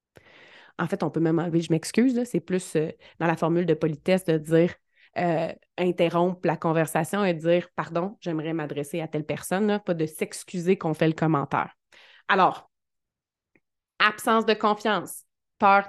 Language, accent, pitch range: French, Canadian, 165-205 Hz